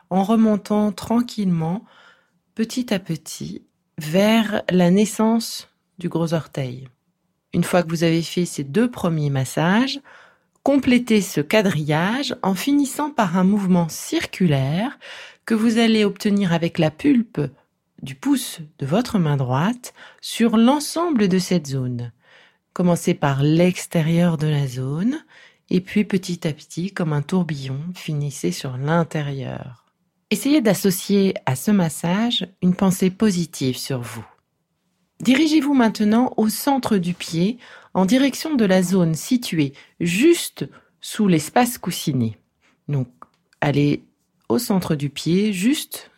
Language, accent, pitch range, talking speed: French, French, 165-225 Hz, 130 wpm